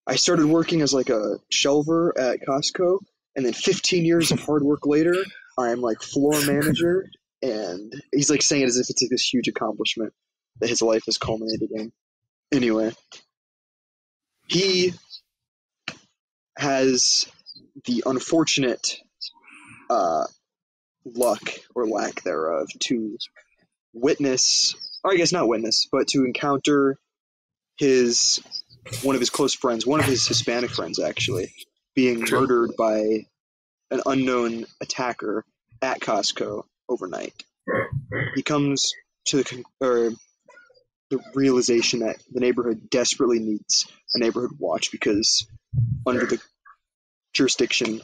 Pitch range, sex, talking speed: 120-155 Hz, male, 120 wpm